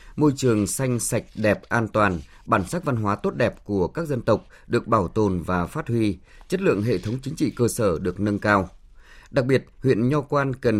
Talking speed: 220 wpm